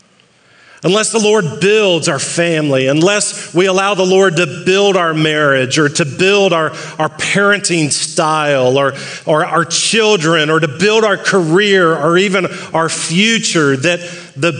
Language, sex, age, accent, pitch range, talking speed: English, male, 40-59, American, 160-195 Hz, 150 wpm